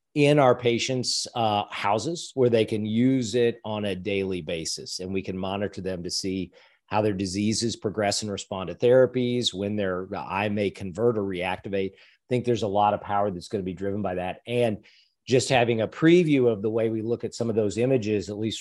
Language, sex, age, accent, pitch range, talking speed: English, male, 40-59, American, 100-125 Hz, 215 wpm